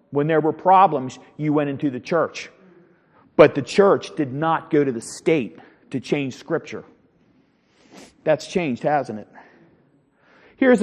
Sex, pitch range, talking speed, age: male, 160-195 Hz, 145 wpm, 40-59